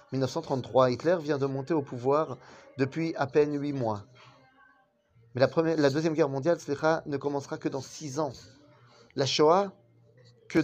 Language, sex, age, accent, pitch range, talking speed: French, male, 30-49, French, 120-150 Hz, 165 wpm